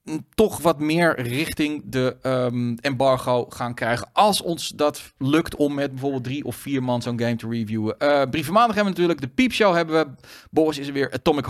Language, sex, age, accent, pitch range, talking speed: Dutch, male, 40-59, Dutch, 125-160 Hz, 210 wpm